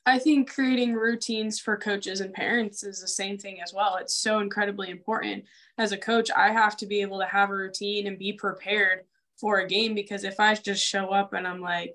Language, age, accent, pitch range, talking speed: English, 10-29, American, 195-230 Hz, 225 wpm